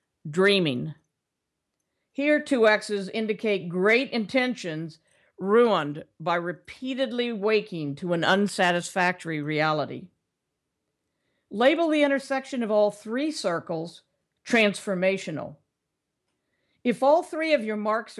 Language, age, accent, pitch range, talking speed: English, 50-69, American, 180-235 Hz, 95 wpm